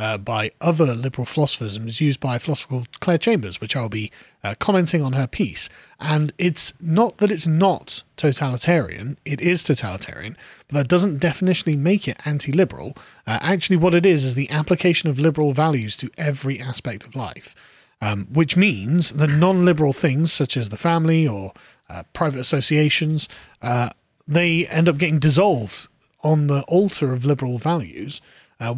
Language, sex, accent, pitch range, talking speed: English, male, British, 140-180 Hz, 165 wpm